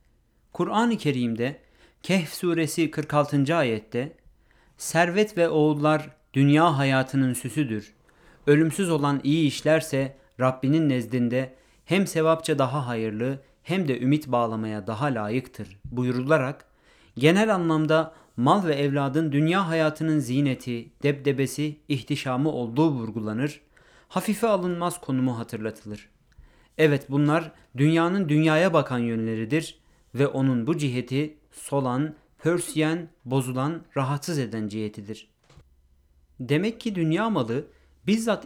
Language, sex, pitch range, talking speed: Turkish, male, 125-165 Hz, 105 wpm